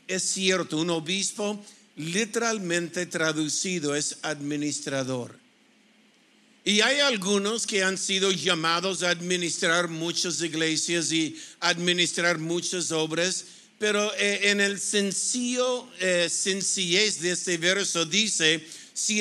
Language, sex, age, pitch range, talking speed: Spanish, male, 50-69, 165-200 Hz, 105 wpm